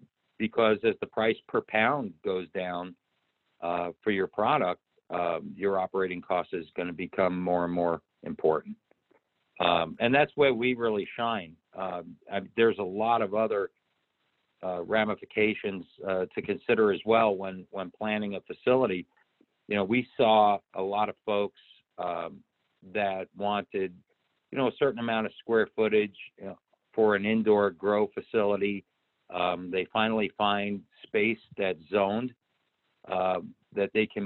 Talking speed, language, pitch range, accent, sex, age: 150 wpm, English, 95-110 Hz, American, male, 50-69